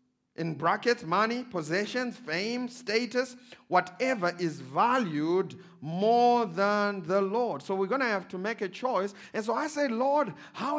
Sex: male